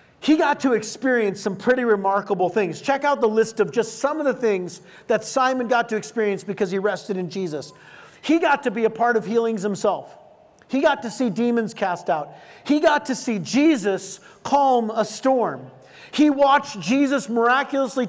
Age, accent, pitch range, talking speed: 40-59, American, 210-275 Hz, 185 wpm